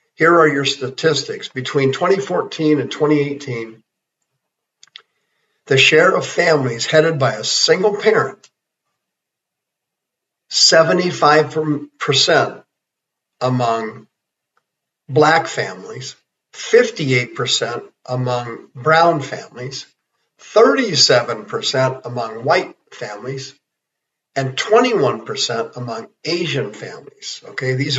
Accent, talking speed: American, 75 wpm